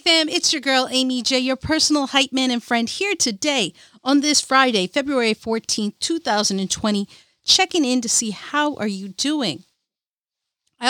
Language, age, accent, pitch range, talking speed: English, 40-59, American, 215-275 Hz, 160 wpm